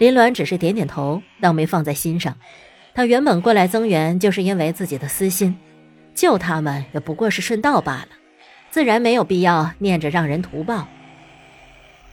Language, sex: Chinese, female